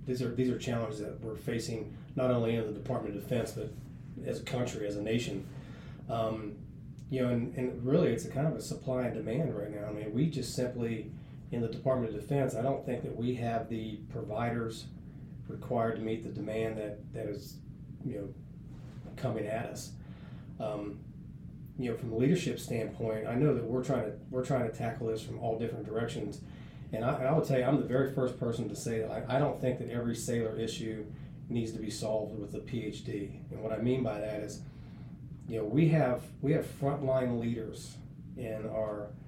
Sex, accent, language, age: male, American, English, 30-49